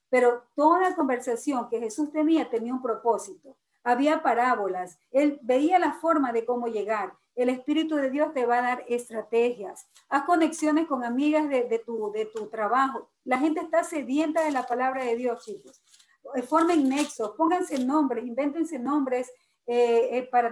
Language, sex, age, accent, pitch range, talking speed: Spanish, female, 40-59, American, 235-290 Hz, 165 wpm